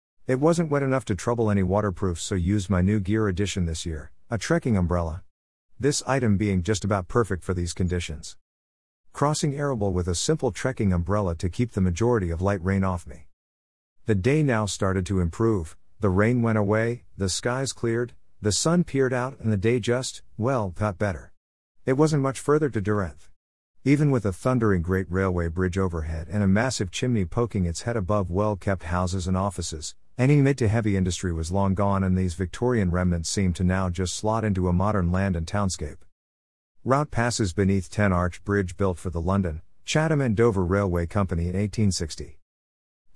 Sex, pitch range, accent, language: male, 90-115 Hz, American, English